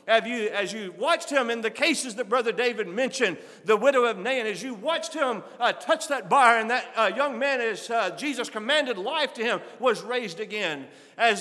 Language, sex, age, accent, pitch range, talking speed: English, male, 40-59, American, 220-280 Hz, 205 wpm